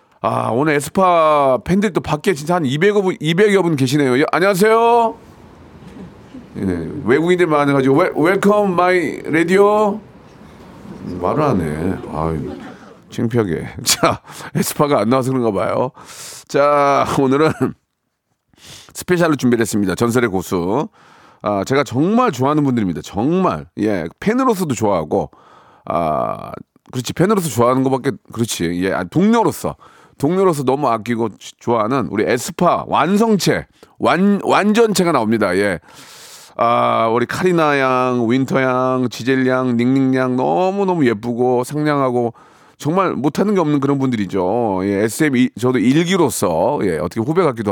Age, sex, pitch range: 40-59, male, 125-185 Hz